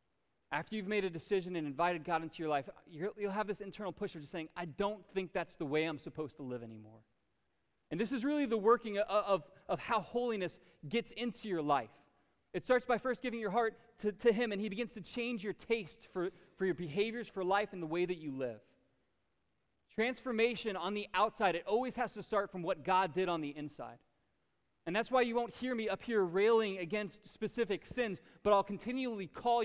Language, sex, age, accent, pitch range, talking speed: English, male, 20-39, American, 175-230 Hz, 215 wpm